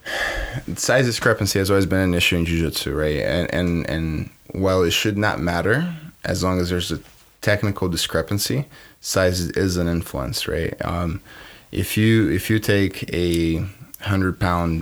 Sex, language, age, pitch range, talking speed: male, English, 20-39, 85-100 Hz, 160 wpm